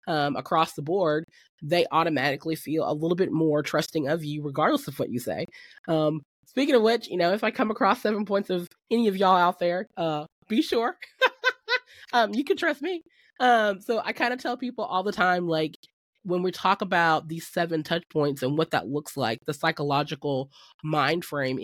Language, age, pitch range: English, 20-39, 140-175 Hz